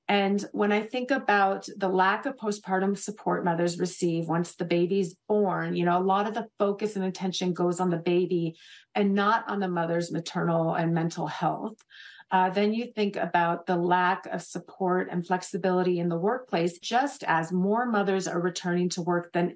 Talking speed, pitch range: 185 wpm, 175-215 Hz